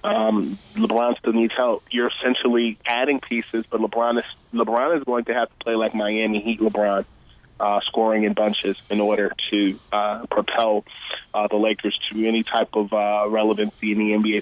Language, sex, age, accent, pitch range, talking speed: English, male, 20-39, American, 105-115 Hz, 185 wpm